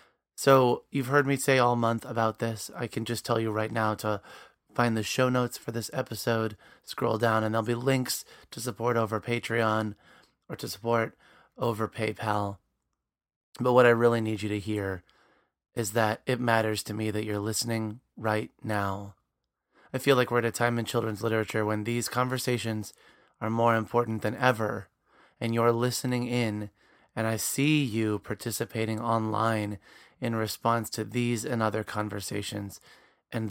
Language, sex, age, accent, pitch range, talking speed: English, male, 30-49, American, 110-120 Hz, 170 wpm